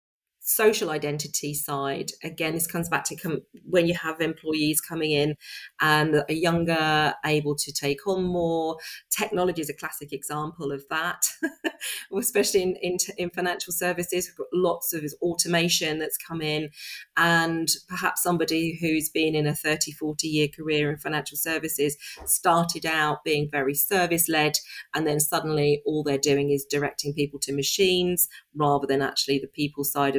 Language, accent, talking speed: English, British, 160 wpm